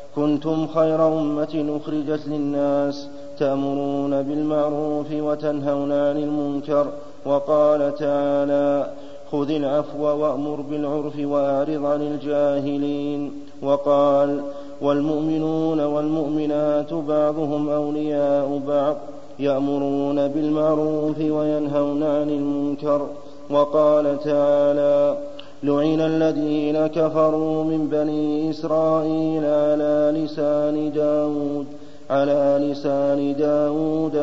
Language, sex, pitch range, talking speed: Arabic, male, 145-150 Hz, 75 wpm